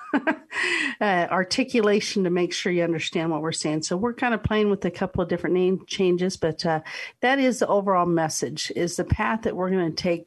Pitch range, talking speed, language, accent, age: 165-205 Hz, 215 wpm, English, American, 50-69